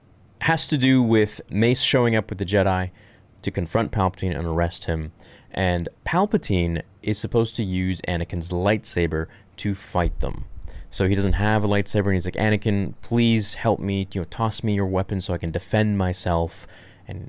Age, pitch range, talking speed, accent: 20-39, 90-110 Hz, 180 wpm, American